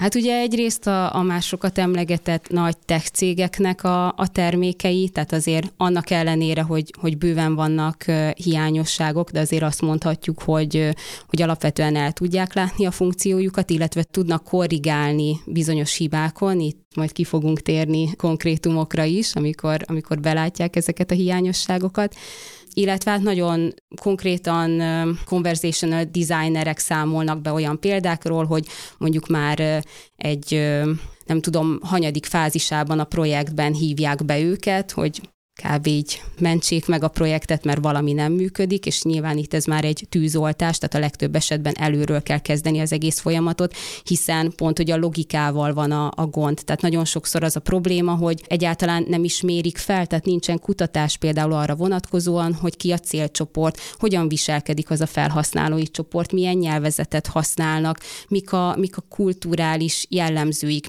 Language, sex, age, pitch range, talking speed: Hungarian, female, 20-39, 155-180 Hz, 150 wpm